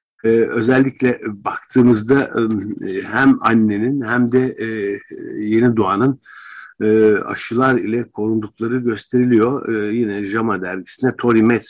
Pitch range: 105-125 Hz